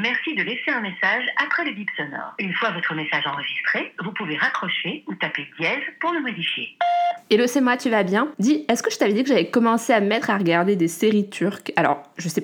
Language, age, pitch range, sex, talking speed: French, 20-39, 170-210 Hz, female, 240 wpm